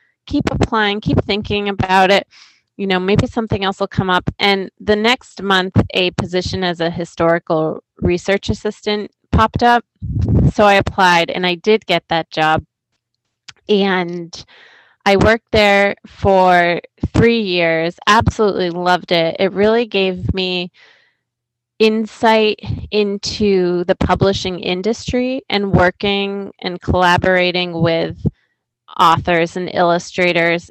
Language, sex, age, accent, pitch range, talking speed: English, female, 20-39, American, 175-205 Hz, 125 wpm